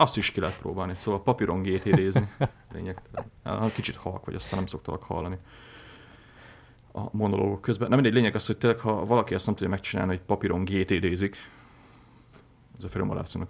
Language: Hungarian